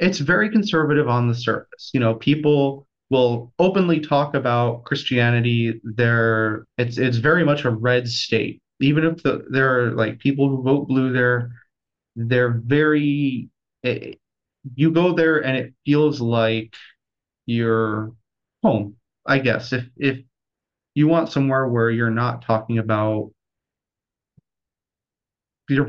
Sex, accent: male, American